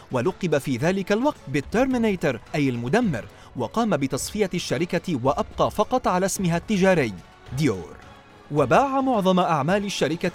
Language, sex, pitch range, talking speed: Arabic, male, 150-225 Hz, 115 wpm